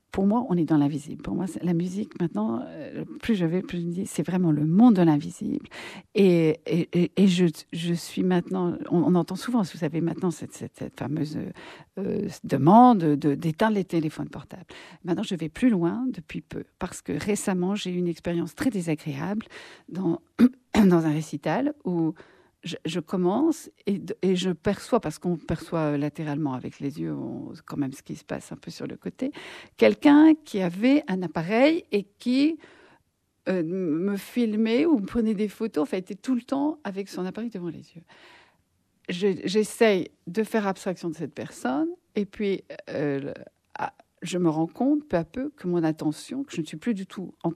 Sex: female